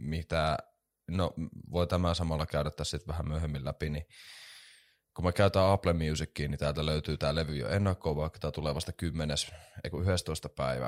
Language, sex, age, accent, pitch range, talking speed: Finnish, male, 20-39, native, 75-95 Hz, 160 wpm